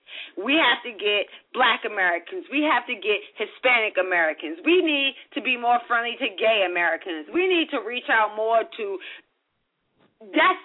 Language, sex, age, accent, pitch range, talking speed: English, female, 30-49, American, 240-345 Hz, 165 wpm